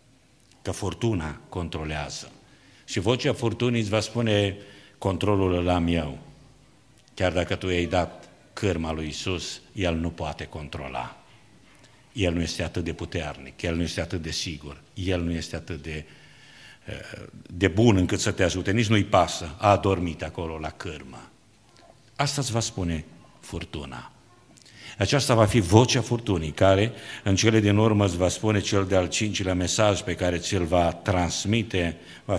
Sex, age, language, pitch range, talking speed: male, 50-69, Romanian, 85-115 Hz, 155 wpm